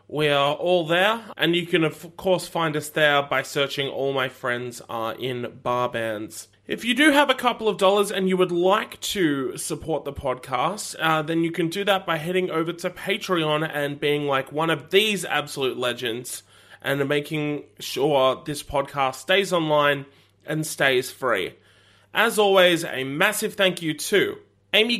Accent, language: Australian, English